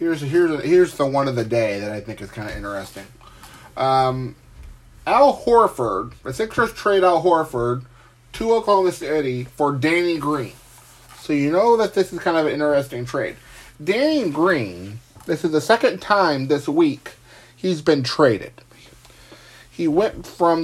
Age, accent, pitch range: 30-49, American, 120-155 Hz